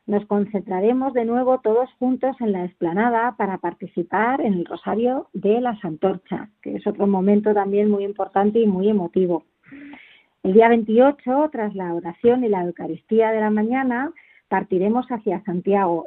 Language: Spanish